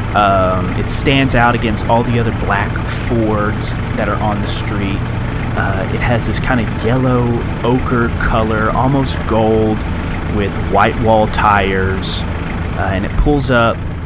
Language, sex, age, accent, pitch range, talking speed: English, male, 30-49, American, 90-115 Hz, 150 wpm